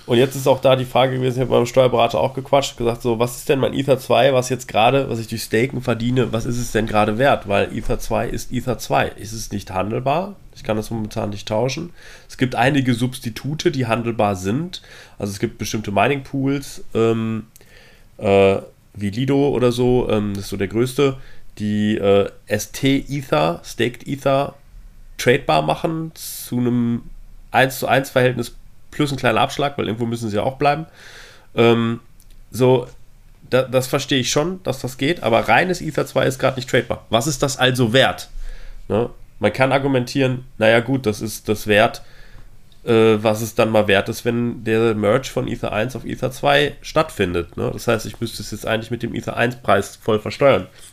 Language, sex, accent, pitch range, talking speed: German, male, German, 110-130 Hz, 195 wpm